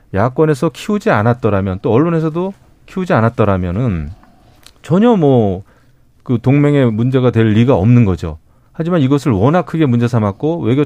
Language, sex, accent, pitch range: Korean, male, native, 110-150 Hz